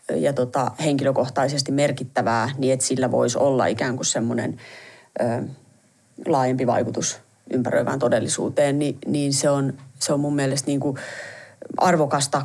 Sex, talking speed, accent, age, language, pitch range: female, 125 wpm, native, 30-49, Finnish, 130-150 Hz